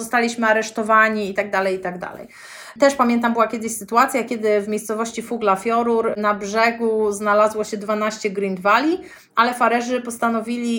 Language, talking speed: Polish, 155 wpm